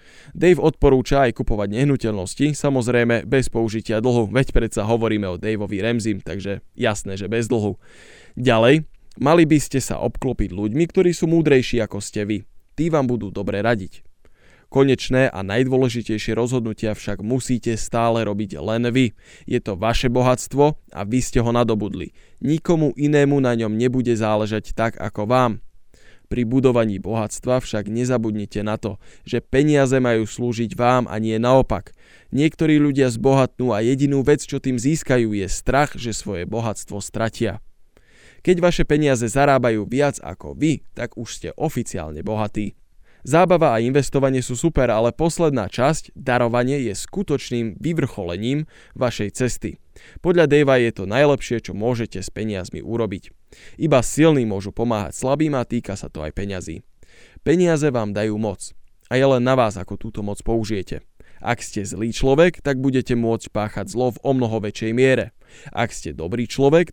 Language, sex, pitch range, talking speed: Slovak, male, 105-135 Hz, 155 wpm